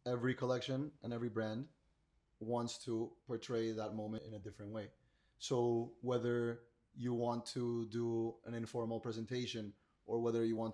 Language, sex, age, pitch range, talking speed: English, male, 20-39, 110-120 Hz, 150 wpm